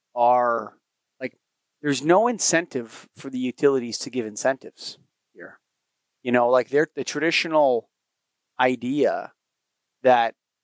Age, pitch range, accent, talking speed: 30-49, 125-155 Hz, American, 115 wpm